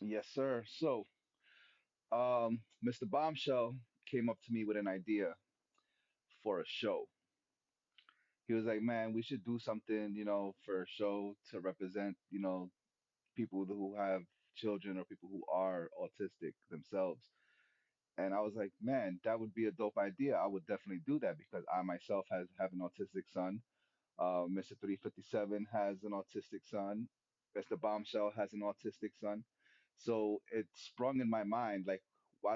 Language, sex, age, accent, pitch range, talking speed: English, male, 30-49, American, 100-115 Hz, 160 wpm